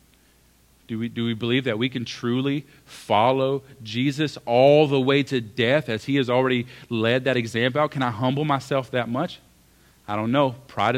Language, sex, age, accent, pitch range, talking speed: English, male, 40-59, American, 115-140 Hz, 180 wpm